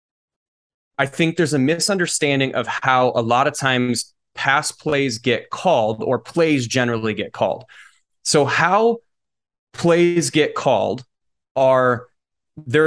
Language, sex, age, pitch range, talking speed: English, male, 20-39, 115-145 Hz, 125 wpm